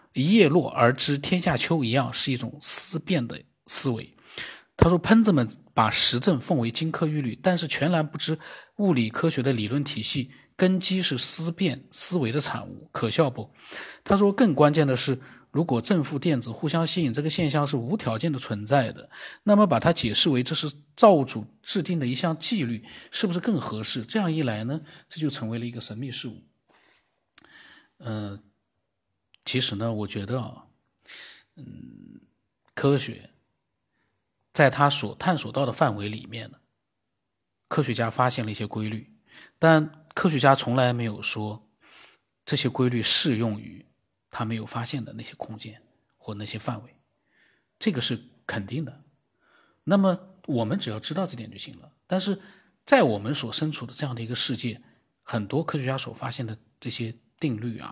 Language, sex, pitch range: Chinese, male, 115-160 Hz